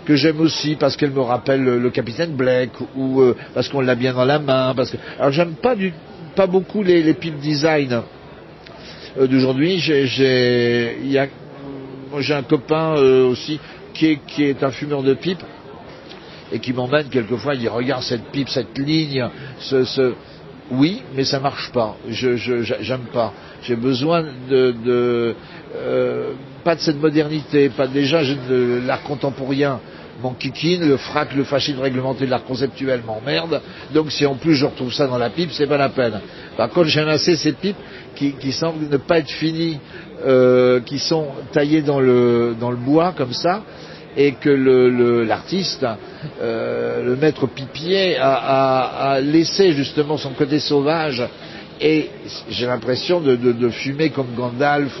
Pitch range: 125-150 Hz